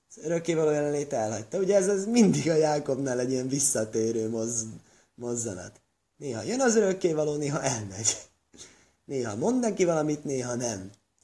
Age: 20-39